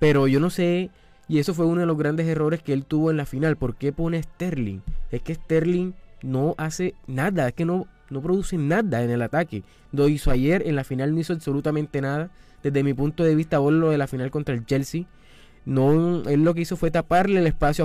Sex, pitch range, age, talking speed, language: male, 130-155 Hz, 20-39, 230 wpm, Spanish